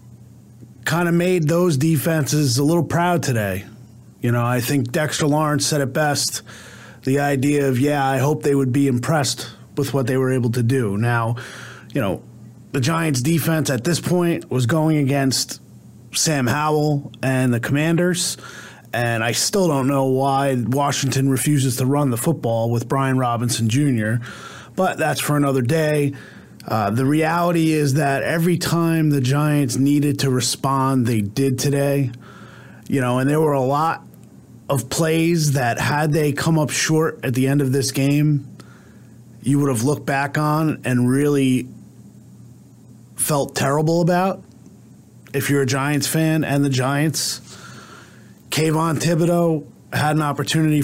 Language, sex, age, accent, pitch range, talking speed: English, male, 30-49, American, 130-155 Hz, 155 wpm